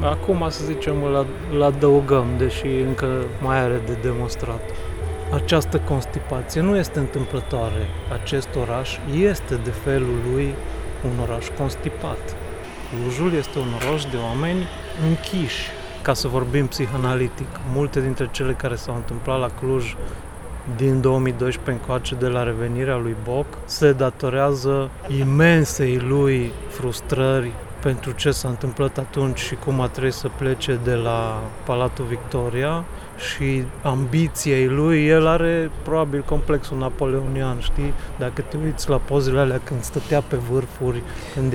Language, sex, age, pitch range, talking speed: Romanian, male, 30-49, 125-140 Hz, 135 wpm